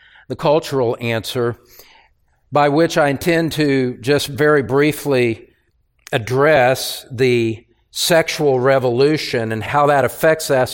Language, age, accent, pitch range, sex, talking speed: English, 50-69, American, 120-150 Hz, male, 110 wpm